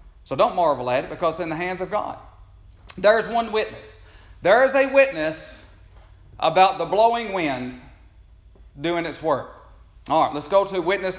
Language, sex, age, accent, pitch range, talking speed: English, male, 40-59, American, 135-190 Hz, 170 wpm